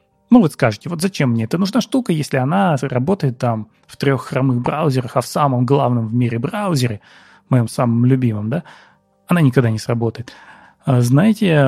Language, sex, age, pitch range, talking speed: Russian, male, 20-39, 125-155 Hz, 175 wpm